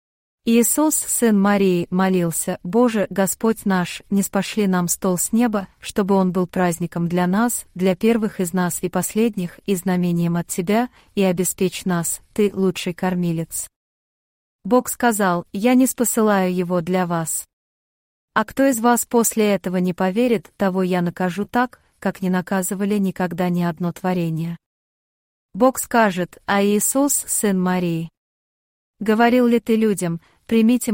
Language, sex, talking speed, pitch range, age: English, female, 140 wpm, 180-220 Hz, 30-49